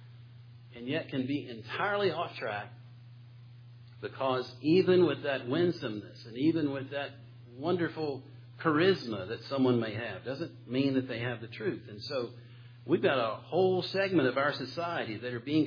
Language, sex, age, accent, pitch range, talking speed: English, male, 50-69, American, 120-140 Hz, 160 wpm